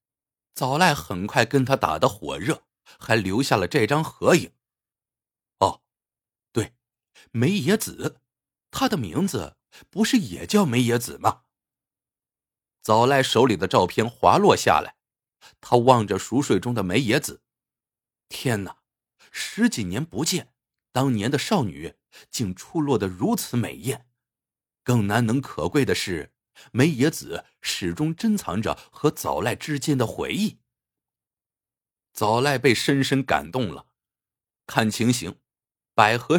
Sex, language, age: male, Chinese, 50-69